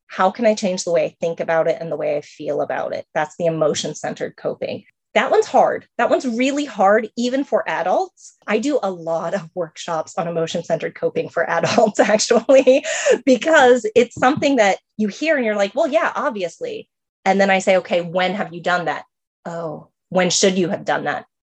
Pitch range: 170-235 Hz